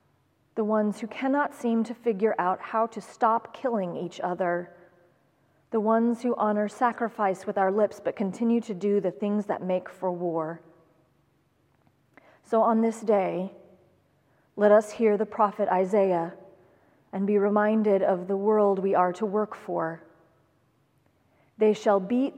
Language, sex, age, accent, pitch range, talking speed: English, female, 30-49, American, 185-225 Hz, 150 wpm